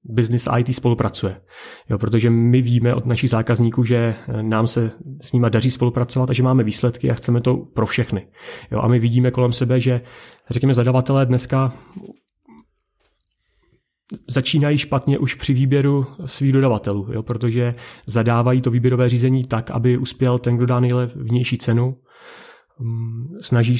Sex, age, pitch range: male, 30-49, 115-125 Hz